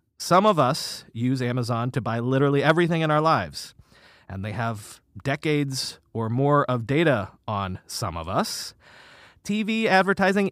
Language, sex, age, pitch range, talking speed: English, male, 30-49, 120-170 Hz, 150 wpm